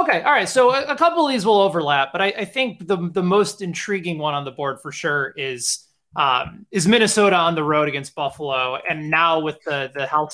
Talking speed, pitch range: 225 wpm, 150-190 Hz